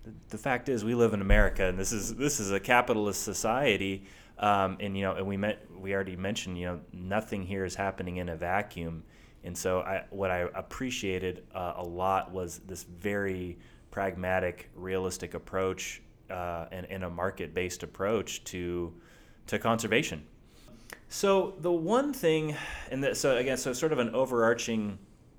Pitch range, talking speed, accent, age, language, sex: 95-110 Hz, 165 wpm, American, 30-49, English, male